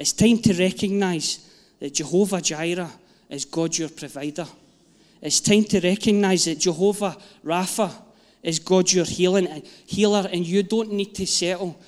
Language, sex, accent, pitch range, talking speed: English, male, British, 165-205 Hz, 140 wpm